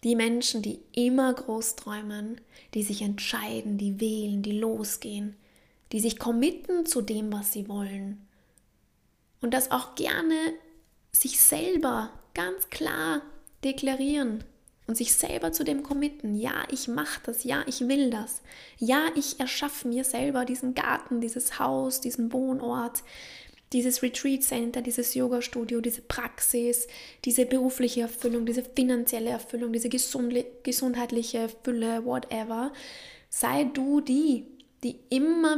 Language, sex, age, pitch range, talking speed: German, female, 20-39, 225-270 Hz, 130 wpm